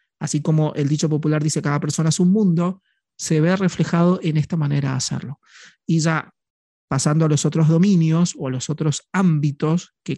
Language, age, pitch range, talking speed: Spanish, 30-49, 150-175 Hz, 190 wpm